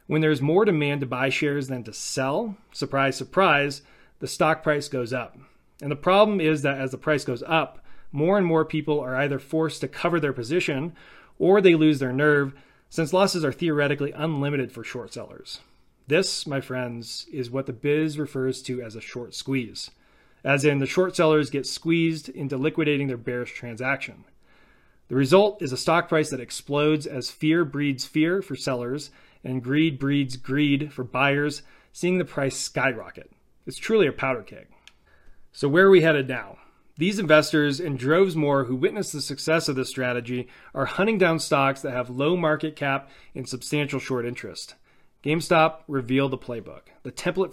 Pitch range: 130-155 Hz